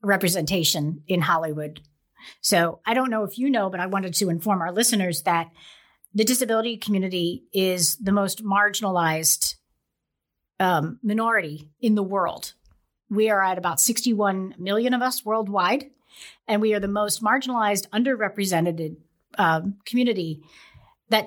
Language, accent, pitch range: English, American, 185-245 Hz